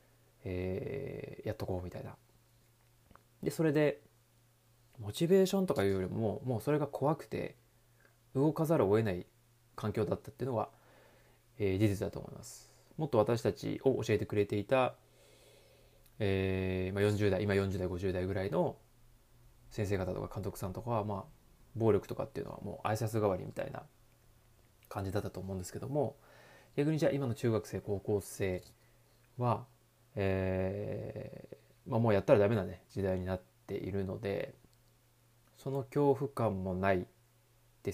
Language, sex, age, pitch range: Japanese, male, 20-39, 100-130 Hz